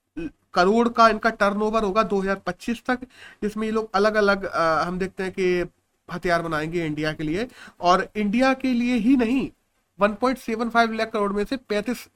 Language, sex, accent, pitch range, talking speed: Hindi, male, native, 180-235 Hz, 165 wpm